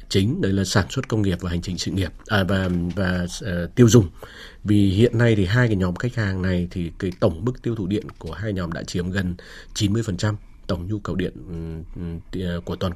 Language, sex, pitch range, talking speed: Vietnamese, male, 95-115 Hz, 225 wpm